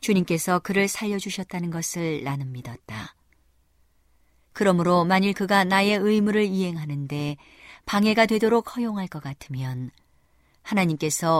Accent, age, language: native, 40-59, Korean